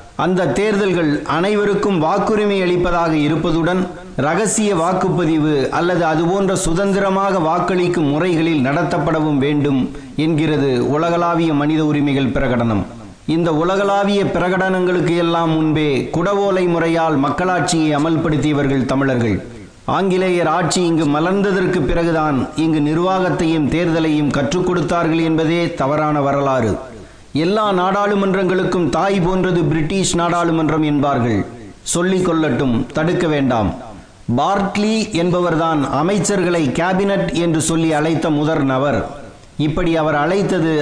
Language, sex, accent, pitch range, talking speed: Tamil, male, native, 150-180 Hz, 95 wpm